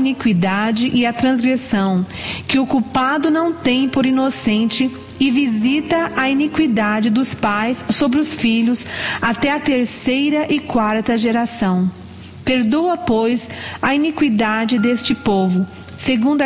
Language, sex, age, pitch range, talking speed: English, female, 40-59, 215-270 Hz, 120 wpm